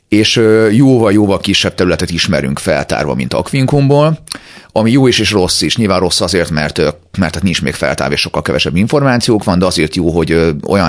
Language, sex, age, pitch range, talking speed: Hungarian, male, 40-59, 80-110 Hz, 185 wpm